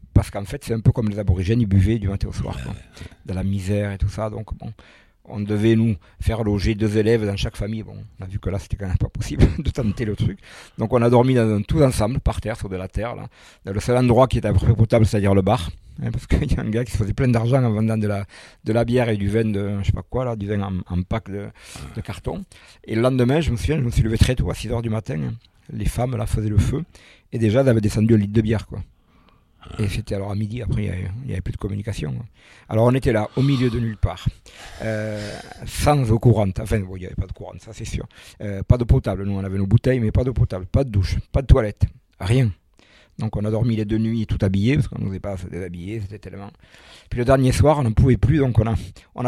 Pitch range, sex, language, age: 100-120 Hz, male, French, 50-69